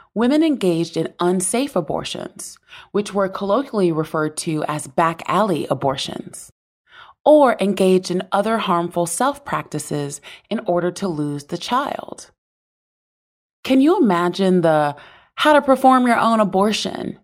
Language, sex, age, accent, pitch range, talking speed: English, female, 30-49, American, 165-230 Hz, 105 wpm